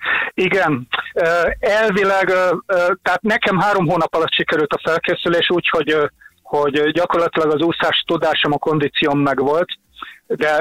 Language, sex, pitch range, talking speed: Hungarian, male, 140-175 Hz, 120 wpm